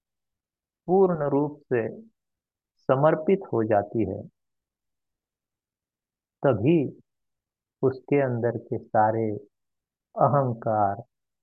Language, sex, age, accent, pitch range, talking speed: Hindi, male, 50-69, native, 105-135 Hz, 70 wpm